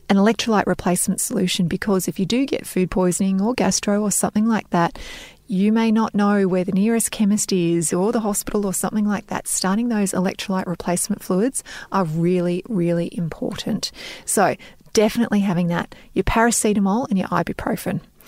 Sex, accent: female, Australian